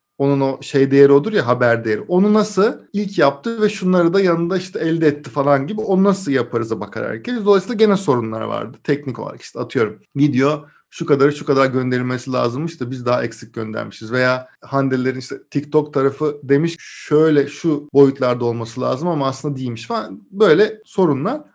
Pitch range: 135-200 Hz